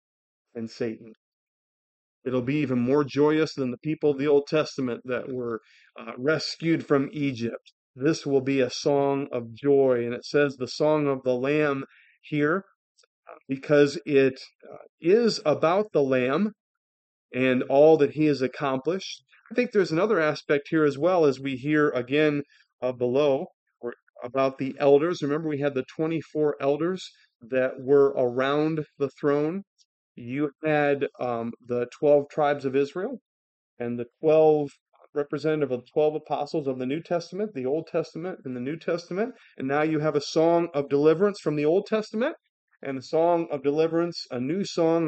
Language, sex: English, male